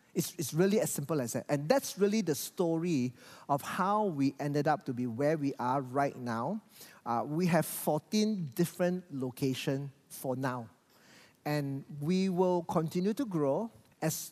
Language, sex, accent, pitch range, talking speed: English, male, Malaysian, 135-175 Hz, 165 wpm